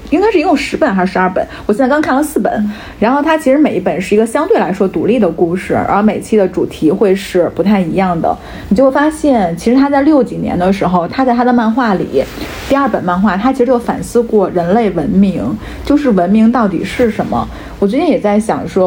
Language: Chinese